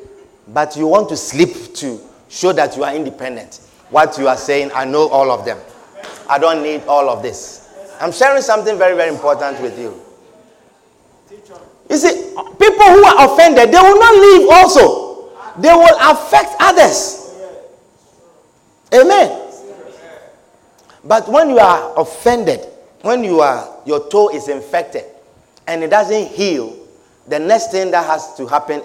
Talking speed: 150 wpm